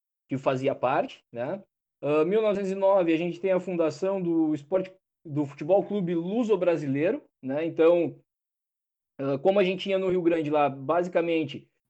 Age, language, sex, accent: 20-39, Portuguese, male, Brazilian